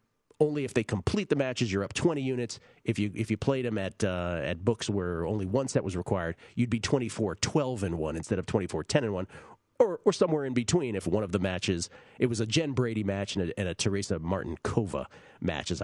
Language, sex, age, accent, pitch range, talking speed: English, male, 40-59, American, 95-125 Hz, 210 wpm